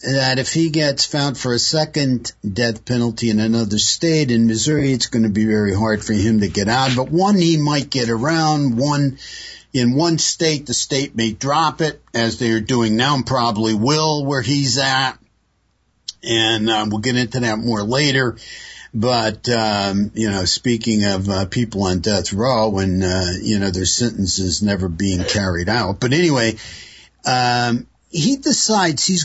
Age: 60-79